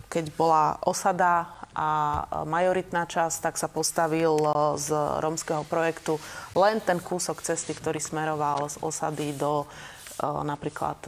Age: 30-49